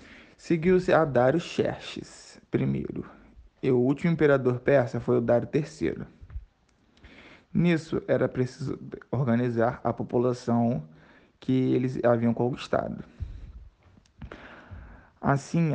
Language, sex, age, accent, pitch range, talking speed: Portuguese, male, 20-39, Brazilian, 120-135 Hz, 95 wpm